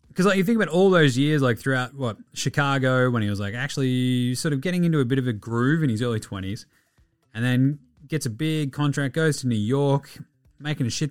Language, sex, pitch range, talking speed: English, male, 120-155 Hz, 230 wpm